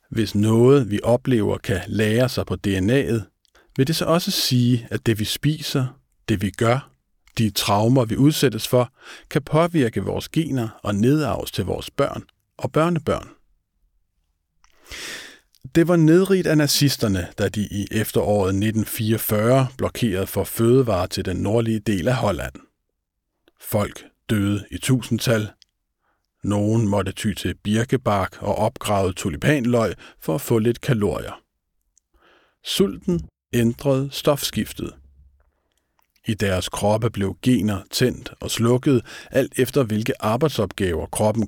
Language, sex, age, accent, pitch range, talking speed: Danish, male, 50-69, native, 100-130 Hz, 130 wpm